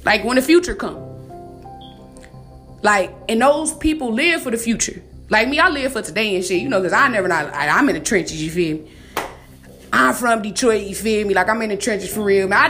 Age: 20-39